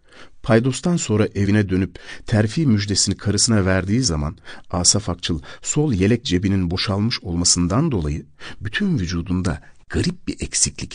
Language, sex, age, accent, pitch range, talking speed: Turkish, male, 60-79, native, 80-110 Hz, 120 wpm